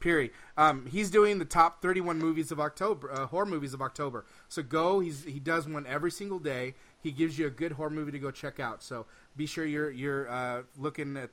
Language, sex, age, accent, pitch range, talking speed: English, male, 30-49, American, 135-165 Hz, 230 wpm